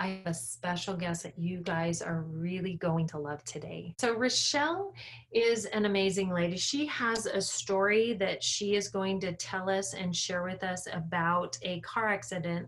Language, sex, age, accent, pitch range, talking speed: English, female, 30-49, American, 175-215 Hz, 185 wpm